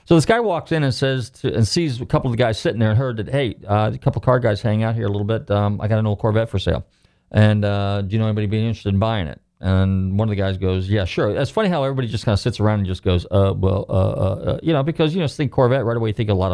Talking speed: 325 wpm